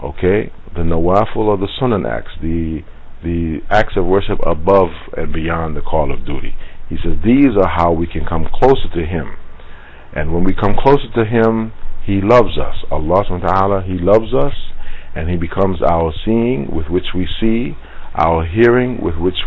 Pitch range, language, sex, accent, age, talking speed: 80-100 Hz, English, male, American, 50-69, 175 wpm